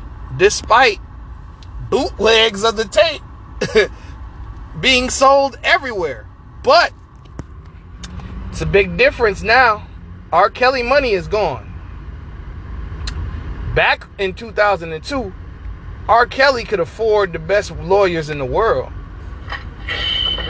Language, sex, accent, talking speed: English, male, American, 95 wpm